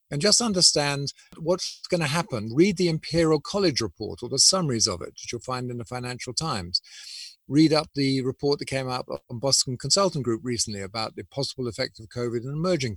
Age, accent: 50-69, British